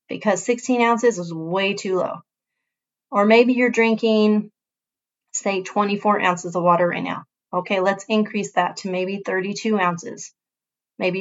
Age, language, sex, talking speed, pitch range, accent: 30-49, English, female, 145 wpm, 185-220 Hz, American